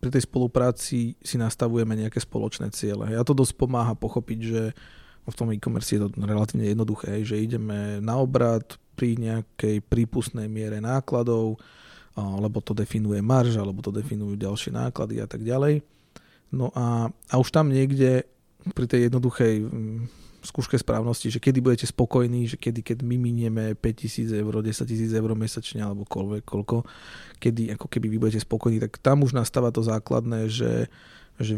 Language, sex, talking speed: Slovak, male, 165 wpm